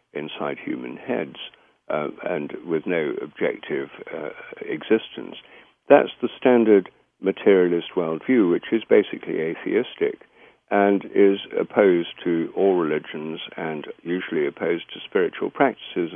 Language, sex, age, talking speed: English, male, 60-79, 115 wpm